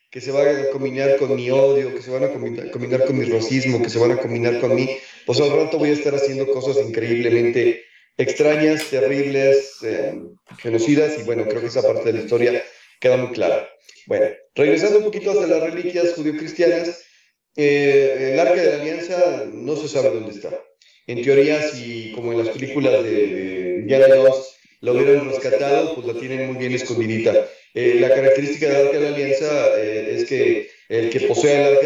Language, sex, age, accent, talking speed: Spanish, male, 30-49, Mexican, 195 wpm